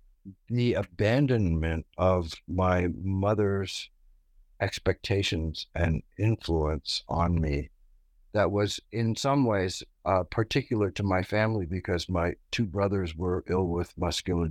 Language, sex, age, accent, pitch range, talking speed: English, male, 60-79, American, 80-100 Hz, 110 wpm